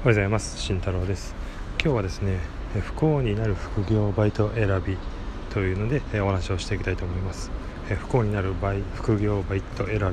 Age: 20-39